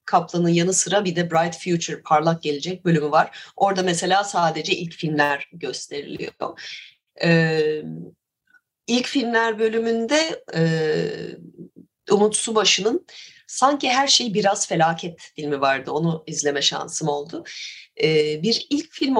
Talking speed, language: 120 wpm, Turkish